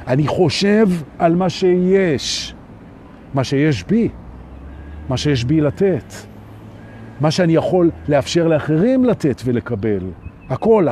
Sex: male